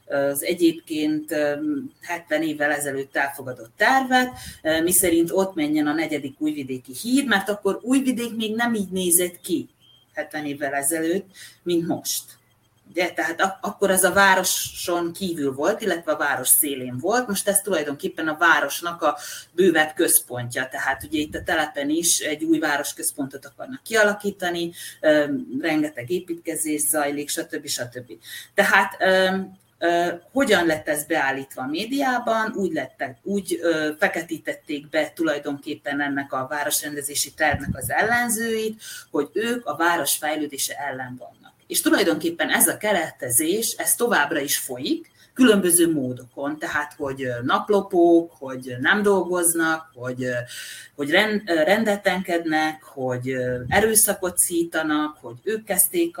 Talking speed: 125 wpm